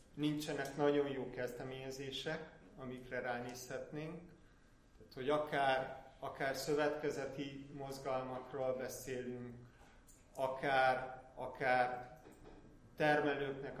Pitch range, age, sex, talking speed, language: 125-145 Hz, 30-49, male, 70 wpm, Hungarian